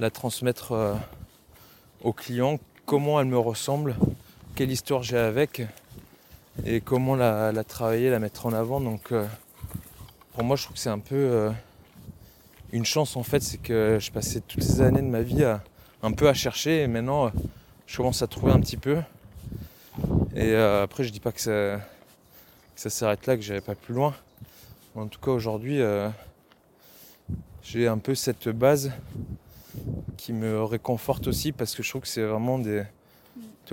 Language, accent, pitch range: French, French, 110-130 Hz